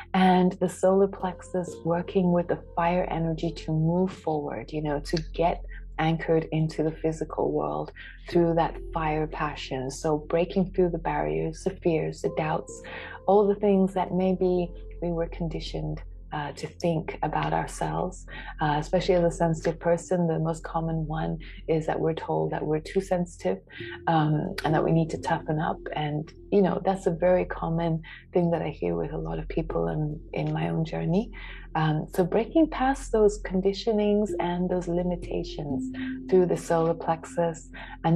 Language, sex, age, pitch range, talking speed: English, female, 30-49, 150-180 Hz, 170 wpm